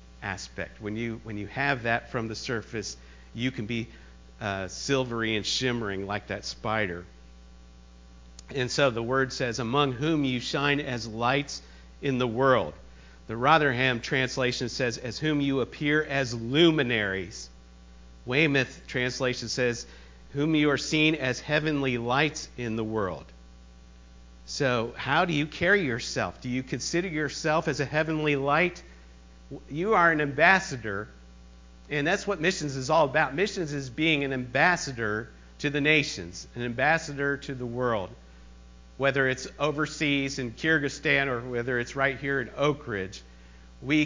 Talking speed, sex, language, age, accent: 150 wpm, male, English, 50-69, American